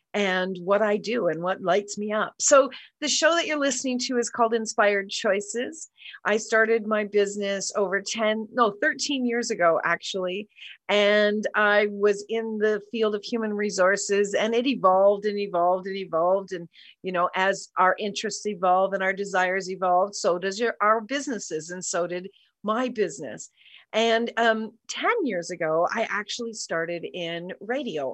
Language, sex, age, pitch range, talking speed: English, female, 50-69, 185-230 Hz, 165 wpm